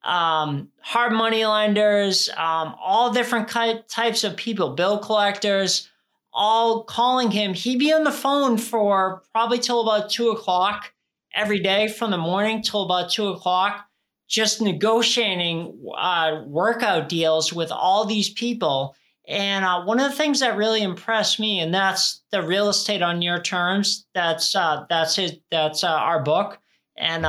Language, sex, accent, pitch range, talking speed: English, male, American, 175-220 Hz, 155 wpm